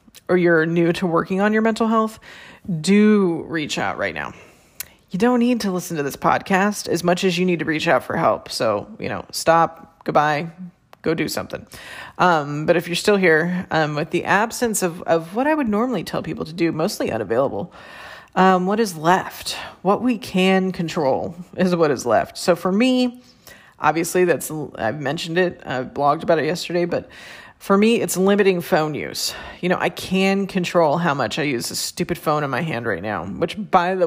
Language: English